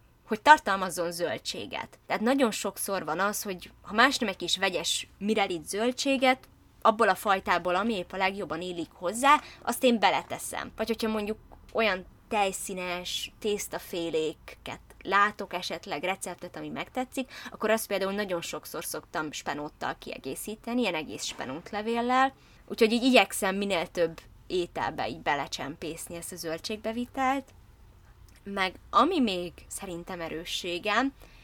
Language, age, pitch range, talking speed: Hungarian, 20-39, 175-235 Hz, 130 wpm